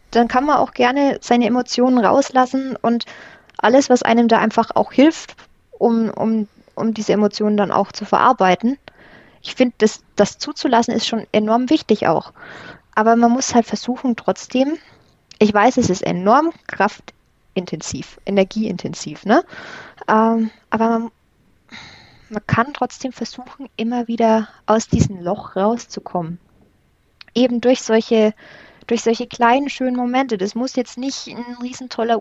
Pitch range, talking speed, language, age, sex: 205-245 Hz, 140 wpm, German, 20-39, female